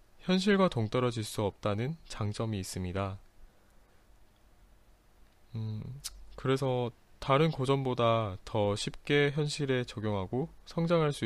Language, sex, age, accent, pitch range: Korean, male, 20-39, native, 105-135 Hz